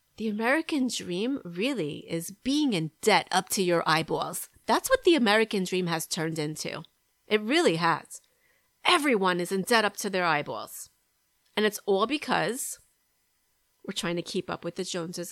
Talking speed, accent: 170 wpm, American